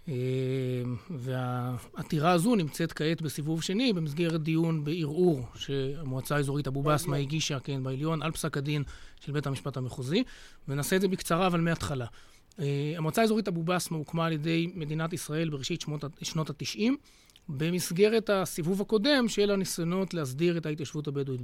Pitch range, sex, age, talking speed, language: 145-200 Hz, male, 30-49, 145 wpm, Hebrew